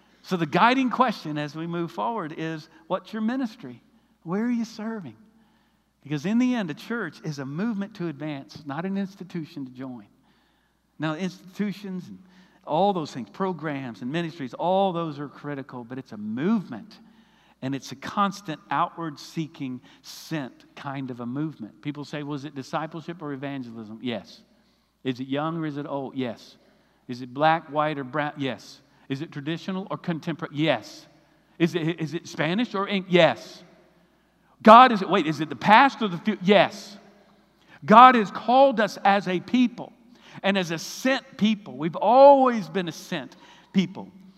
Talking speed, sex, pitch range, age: 175 wpm, male, 155-205 Hz, 50-69